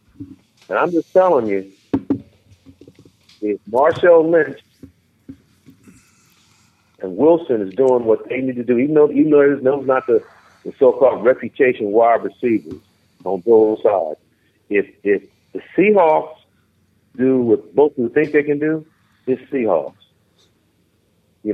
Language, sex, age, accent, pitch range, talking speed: English, male, 50-69, American, 115-170 Hz, 135 wpm